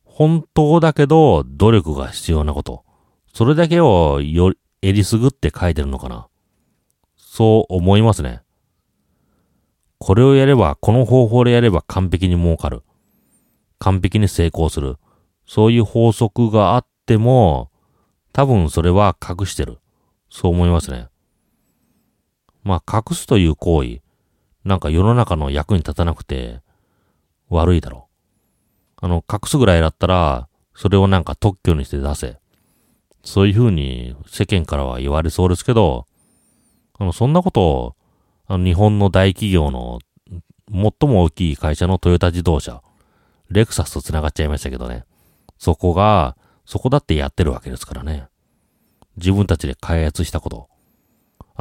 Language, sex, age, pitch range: Japanese, male, 40-59, 75-105 Hz